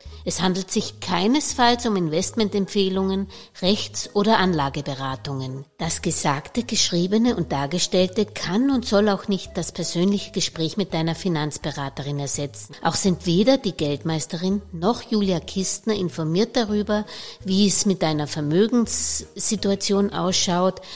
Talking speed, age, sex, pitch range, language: 120 wpm, 60-79, female, 160-210 Hz, German